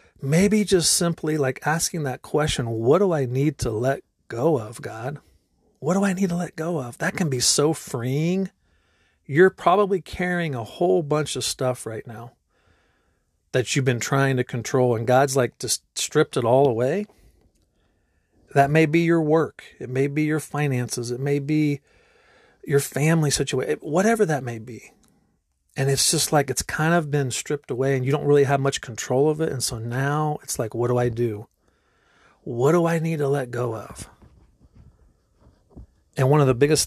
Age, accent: 40-59, American